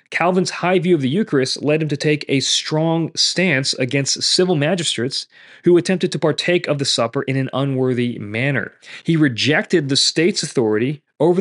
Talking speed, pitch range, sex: 175 wpm, 130-170 Hz, male